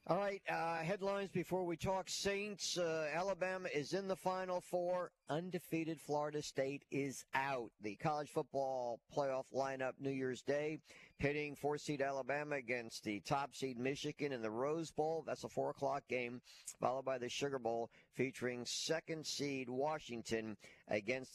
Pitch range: 125-155 Hz